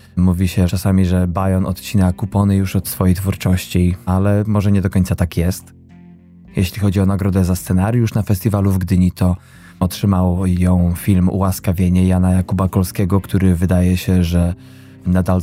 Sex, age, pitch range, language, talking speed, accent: male, 20-39, 90-100 Hz, Polish, 160 wpm, native